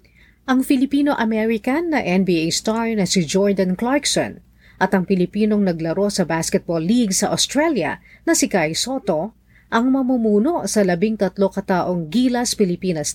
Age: 40-59